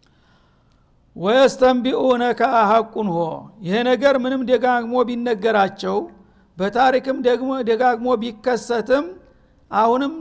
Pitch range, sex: 215-250 Hz, male